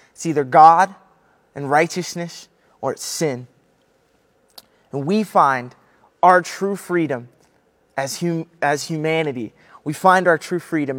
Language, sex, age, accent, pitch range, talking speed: English, male, 20-39, American, 150-180 Hz, 120 wpm